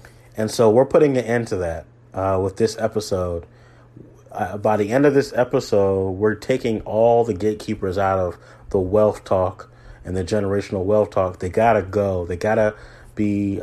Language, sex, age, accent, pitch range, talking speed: English, male, 30-49, American, 100-115 Hz, 185 wpm